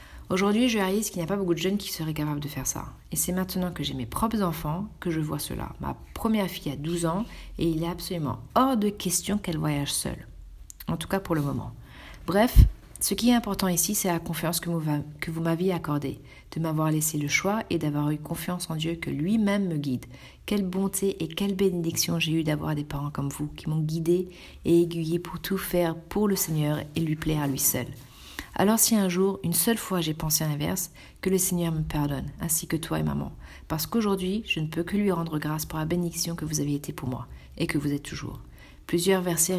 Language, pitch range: French, 150-185 Hz